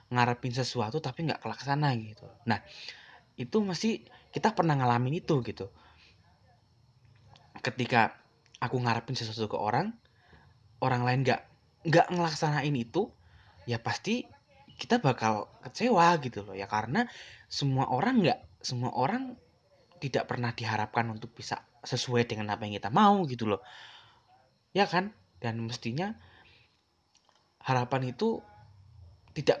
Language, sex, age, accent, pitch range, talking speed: Indonesian, male, 20-39, native, 110-145 Hz, 120 wpm